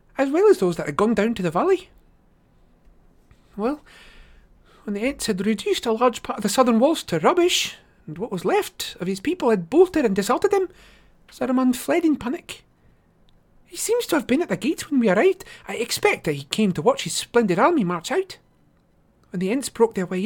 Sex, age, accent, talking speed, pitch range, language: male, 40-59, British, 210 wpm, 225-365 Hz, English